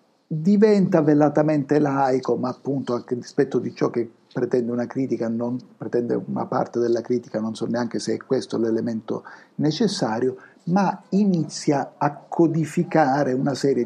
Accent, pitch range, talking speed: native, 110-135 Hz, 140 wpm